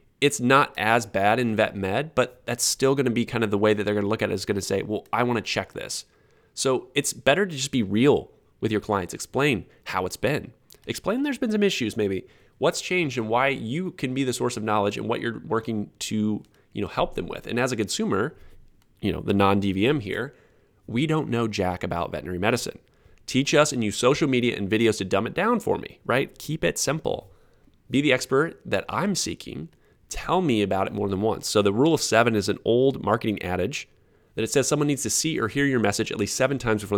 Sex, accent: male, American